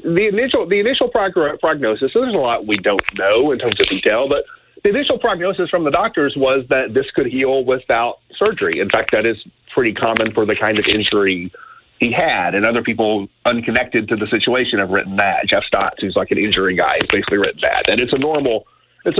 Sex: male